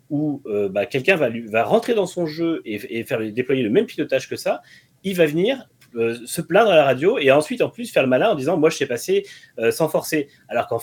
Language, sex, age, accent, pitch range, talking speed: French, male, 30-49, French, 115-160 Hz, 260 wpm